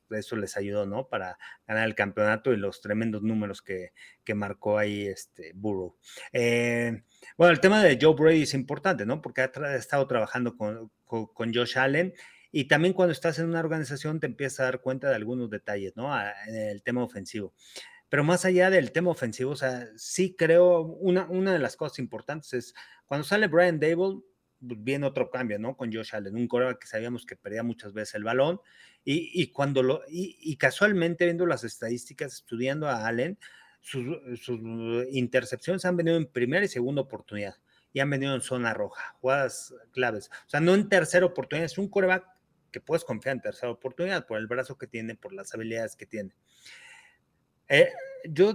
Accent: Mexican